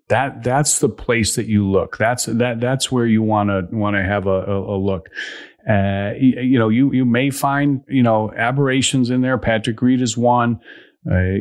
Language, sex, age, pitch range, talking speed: English, male, 40-59, 105-130 Hz, 205 wpm